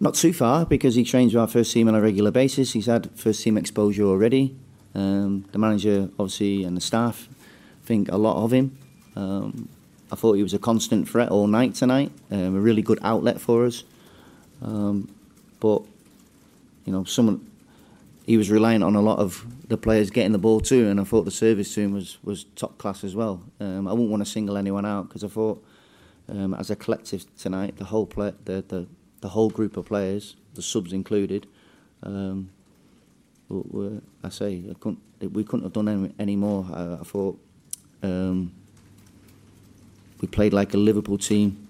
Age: 30-49